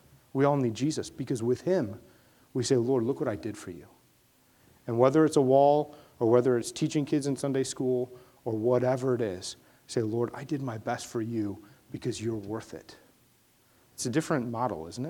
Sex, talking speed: male, 200 wpm